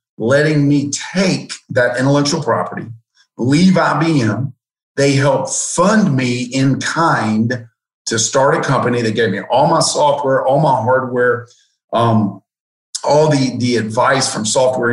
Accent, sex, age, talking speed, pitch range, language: American, male, 50-69, 135 wpm, 115-145 Hz, English